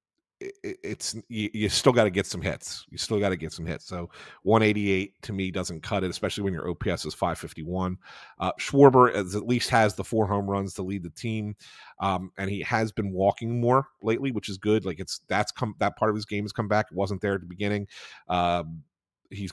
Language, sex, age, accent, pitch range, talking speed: English, male, 40-59, American, 90-105 Hz, 225 wpm